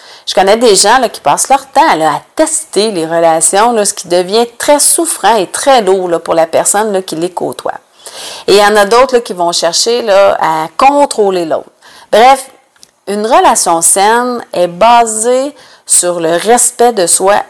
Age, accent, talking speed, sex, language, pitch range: 40-59, Canadian, 170 wpm, female, French, 180-235 Hz